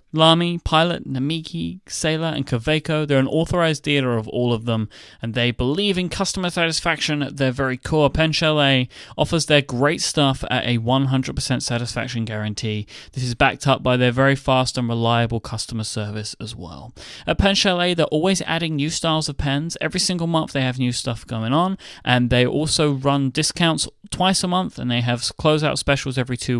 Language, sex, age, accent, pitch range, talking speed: English, male, 30-49, British, 120-155 Hz, 185 wpm